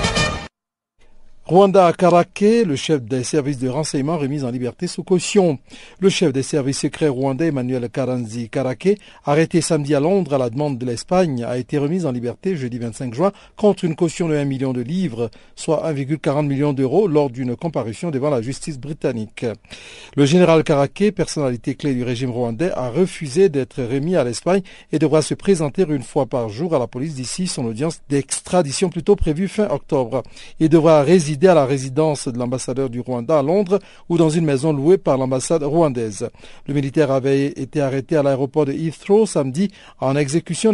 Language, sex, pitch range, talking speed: French, male, 135-170 Hz, 180 wpm